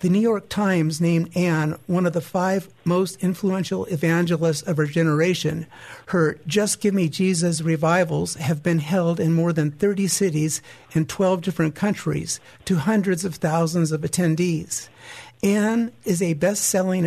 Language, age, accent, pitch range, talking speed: English, 50-69, American, 165-190 Hz, 155 wpm